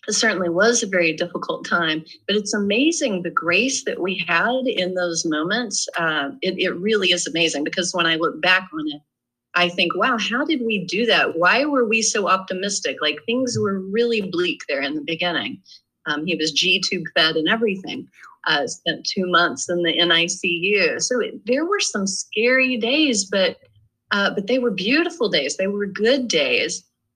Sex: female